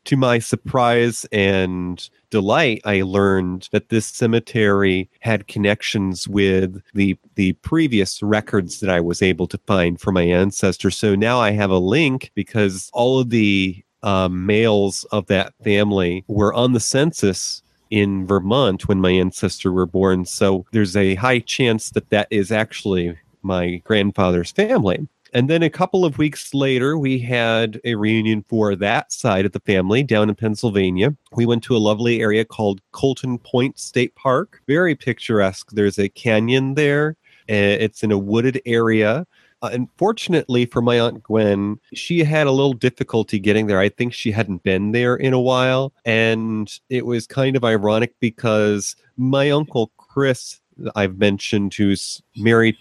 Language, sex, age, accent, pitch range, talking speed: English, male, 30-49, American, 100-125 Hz, 165 wpm